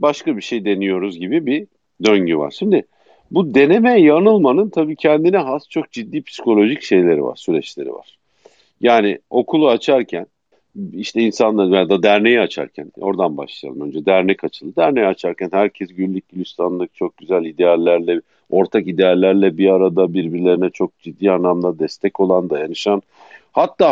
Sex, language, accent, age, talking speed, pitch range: male, Turkish, native, 50-69, 135 wpm, 90-120 Hz